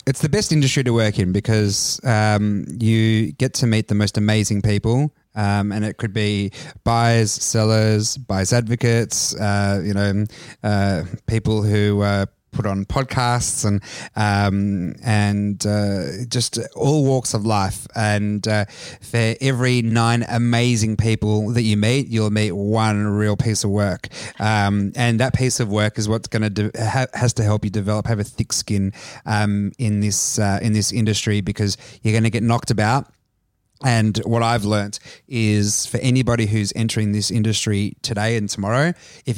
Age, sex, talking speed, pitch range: 30-49, male, 170 wpm, 105-115 Hz